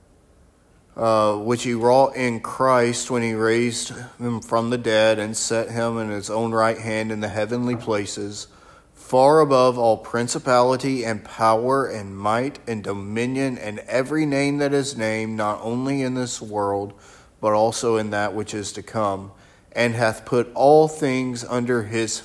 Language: English